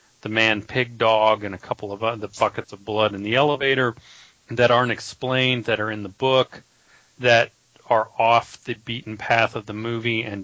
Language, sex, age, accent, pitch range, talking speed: English, male, 40-59, American, 105-120 Hz, 190 wpm